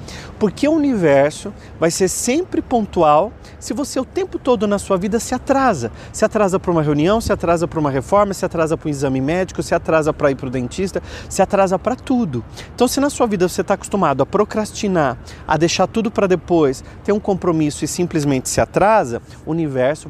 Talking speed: 205 wpm